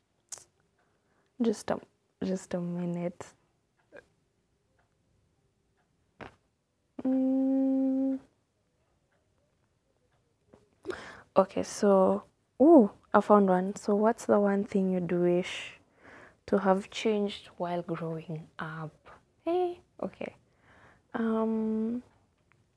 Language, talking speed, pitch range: English, 75 wpm, 165-210 Hz